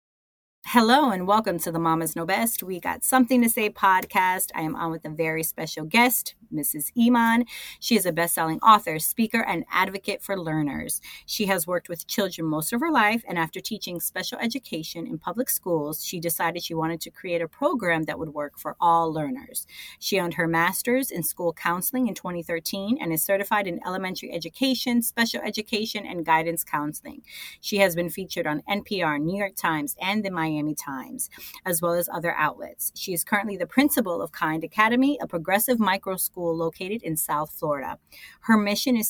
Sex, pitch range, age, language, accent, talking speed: female, 165-225 Hz, 30-49, English, American, 185 wpm